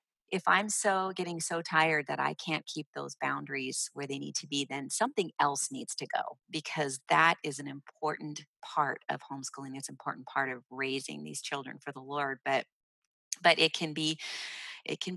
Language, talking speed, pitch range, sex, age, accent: English, 195 wpm, 140-170 Hz, female, 30-49, American